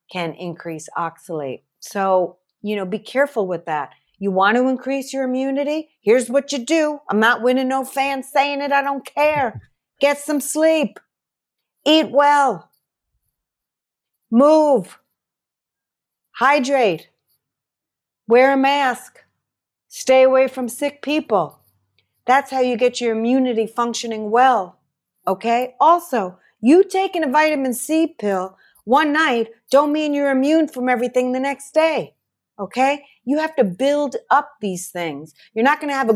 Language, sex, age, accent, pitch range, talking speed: English, female, 40-59, American, 195-275 Hz, 145 wpm